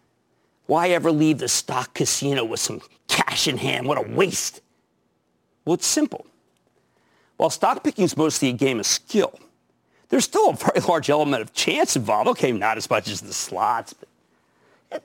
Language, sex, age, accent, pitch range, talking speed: English, male, 50-69, American, 145-235 Hz, 170 wpm